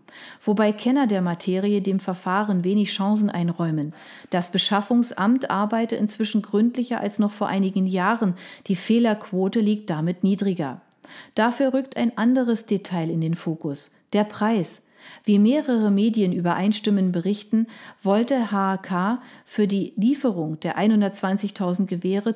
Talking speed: 125 wpm